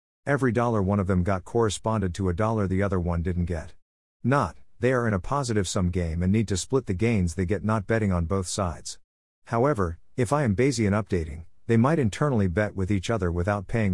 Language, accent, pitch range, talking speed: English, American, 90-115 Hz, 225 wpm